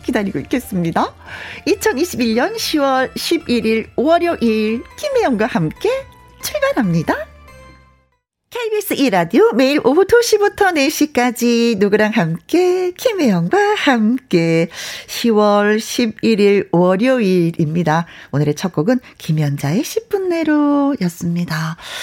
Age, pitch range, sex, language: 40-59, 190-275 Hz, female, Korean